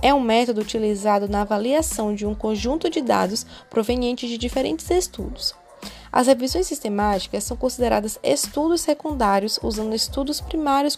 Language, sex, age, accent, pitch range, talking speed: Portuguese, female, 10-29, Brazilian, 210-280 Hz, 135 wpm